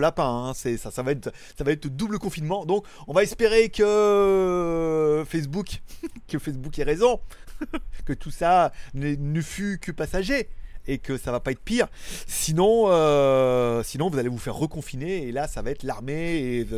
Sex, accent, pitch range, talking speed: male, French, 135-185 Hz, 190 wpm